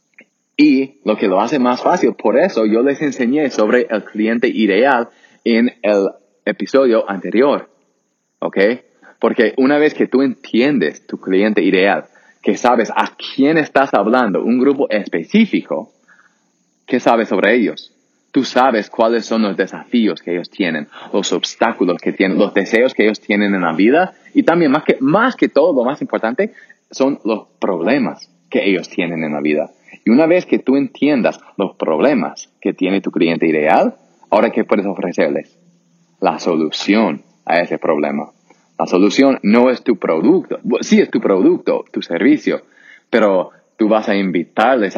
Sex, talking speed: male, 165 wpm